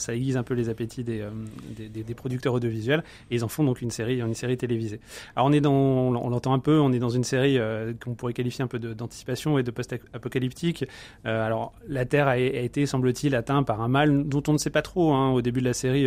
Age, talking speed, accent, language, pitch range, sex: 30-49, 260 wpm, French, French, 120-140 Hz, male